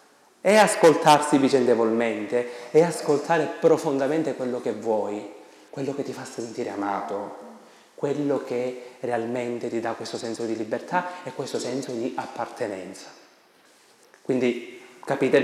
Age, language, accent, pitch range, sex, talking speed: 30-49, Italian, native, 115-150 Hz, male, 120 wpm